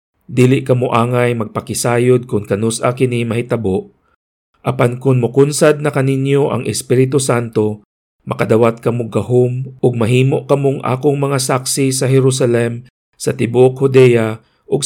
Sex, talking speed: male, 115 wpm